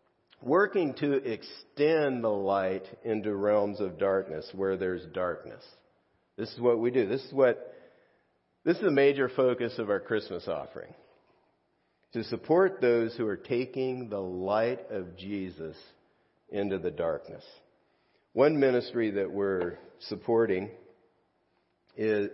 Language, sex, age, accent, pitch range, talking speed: English, male, 50-69, American, 95-120 Hz, 130 wpm